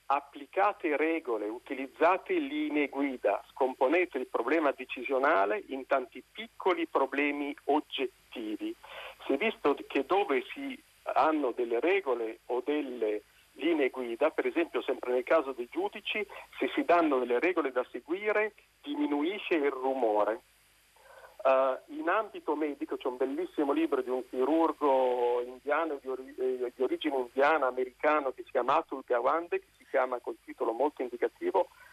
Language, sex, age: Italian, male, 50-69